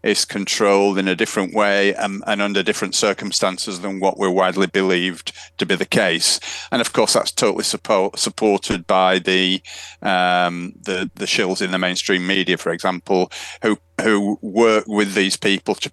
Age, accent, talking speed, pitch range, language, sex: 40-59, British, 175 wpm, 90-105 Hz, English, male